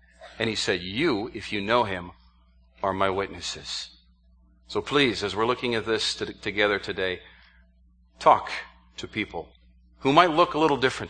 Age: 40-59